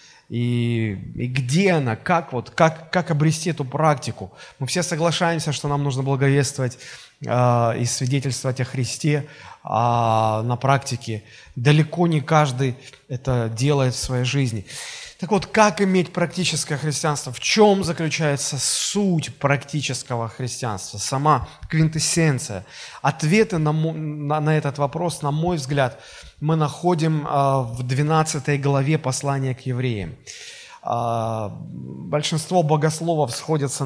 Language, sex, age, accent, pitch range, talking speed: Russian, male, 20-39, native, 125-155 Hz, 120 wpm